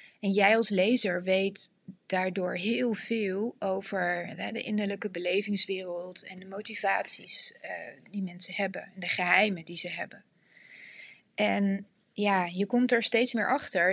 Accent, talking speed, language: Dutch, 135 wpm, Dutch